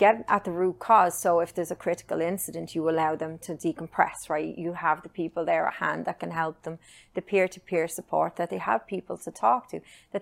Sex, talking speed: female, 230 wpm